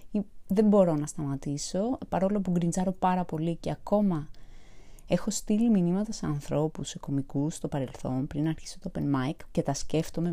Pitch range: 150-210 Hz